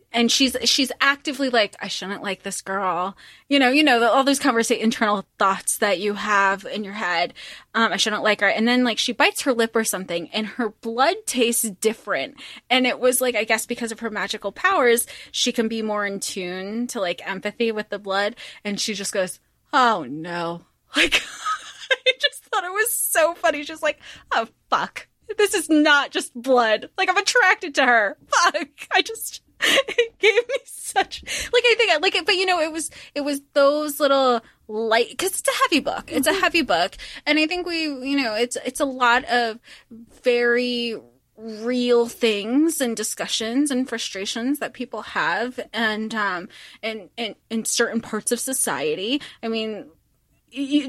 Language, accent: English, American